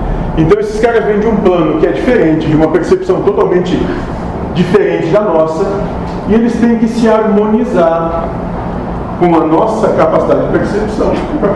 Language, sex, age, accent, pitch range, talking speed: Portuguese, male, 40-59, Brazilian, 160-220 Hz, 155 wpm